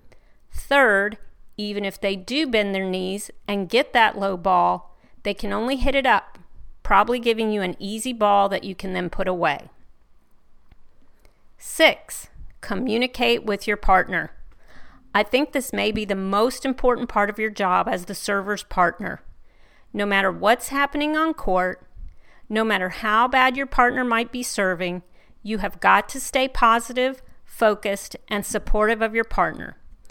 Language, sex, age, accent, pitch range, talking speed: English, female, 40-59, American, 195-245 Hz, 155 wpm